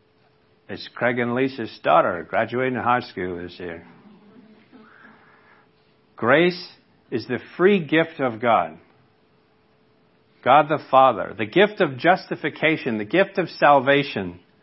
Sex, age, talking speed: male, 50-69, 115 wpm